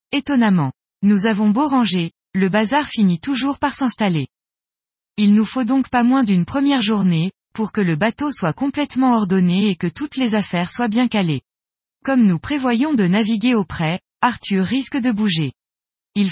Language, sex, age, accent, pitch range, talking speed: French, female, 20-39, French, 180-250 Hz, 170 wpm